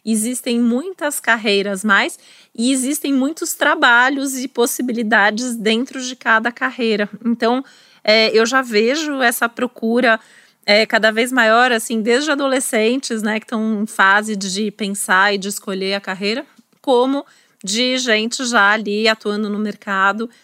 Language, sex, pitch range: Portuguese, female, 205-245 Hz